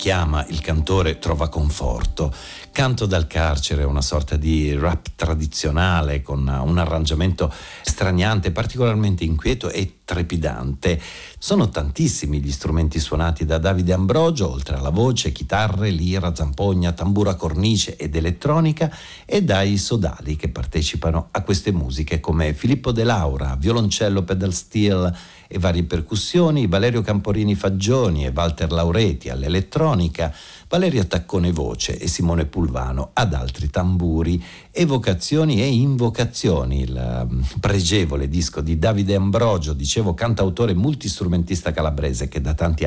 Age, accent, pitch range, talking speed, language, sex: 50-69, native, 80-100 Hz, 120 wpm, Italian, male